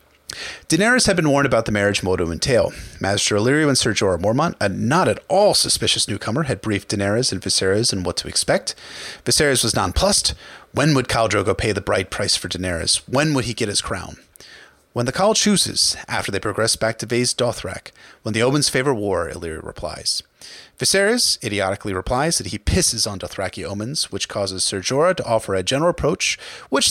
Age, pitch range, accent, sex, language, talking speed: 30-49, 100-135 Hz, American, male, English, 190 wpm